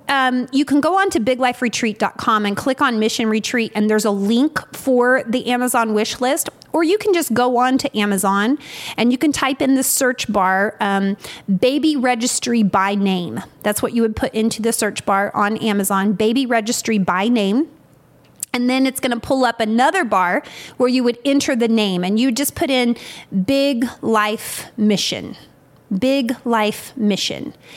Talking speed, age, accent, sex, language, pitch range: 180 wpm, 30-49, American, female, English, 220-275 Hz